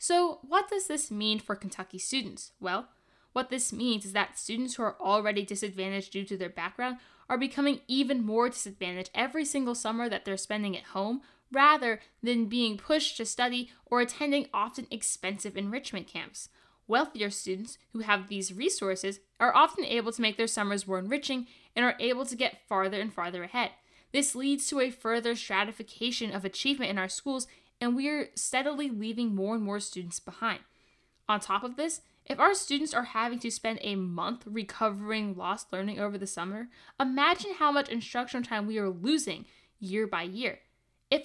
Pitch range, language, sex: 200-270 Hz, English, female